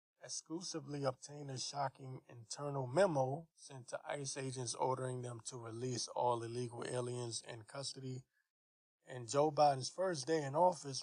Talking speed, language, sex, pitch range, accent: 140 wpm, English, male, 125-150 Hz, American